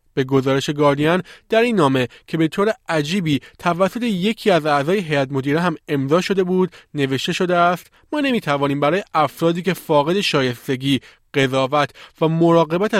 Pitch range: 140-180 Hz